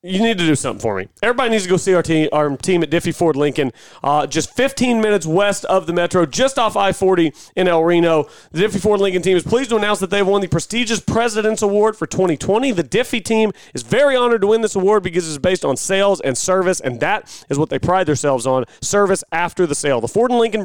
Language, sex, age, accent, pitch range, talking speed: English, male, 30-49, American, 150-200 Hz, 245 wpm